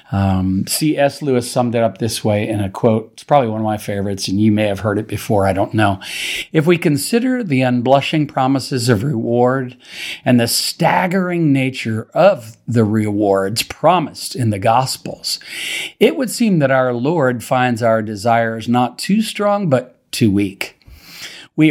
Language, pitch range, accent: English, 110-140 Hz, American